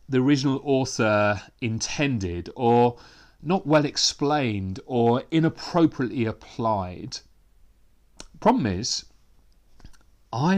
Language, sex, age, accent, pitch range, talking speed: English, male, 40-59, British, 110-150 Hz, 75 wpm